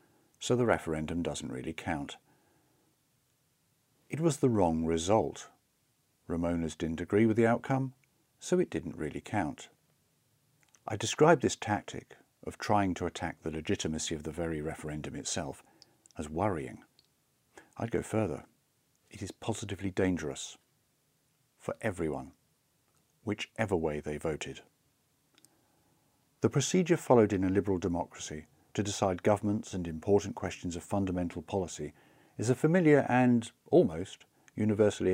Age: 50-69